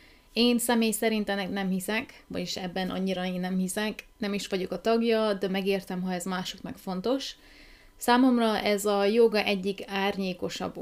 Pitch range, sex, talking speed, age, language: 180-210 Hz, female, 160 wpm, 30-49, Hungarian